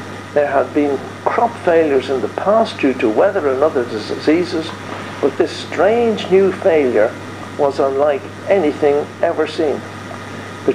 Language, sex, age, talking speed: English, male, 60-79, 140 wpm